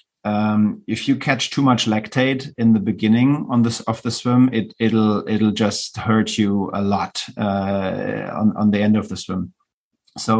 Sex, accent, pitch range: male, German, 110-130 Hz